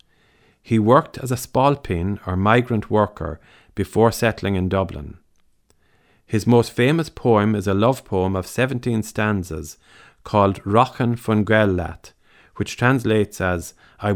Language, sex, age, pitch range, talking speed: English, male, 50-69, 95-120 Hz, 130 wpm